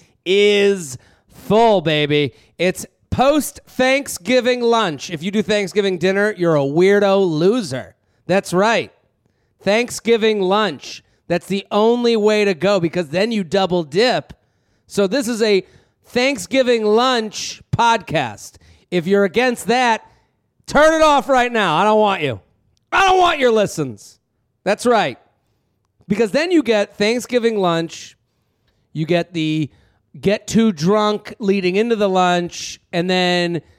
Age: 30-49